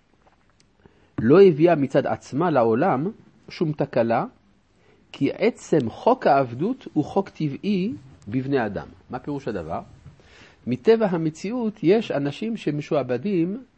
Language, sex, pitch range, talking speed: Hebrew, male, 105-165 Hz, 105 wpm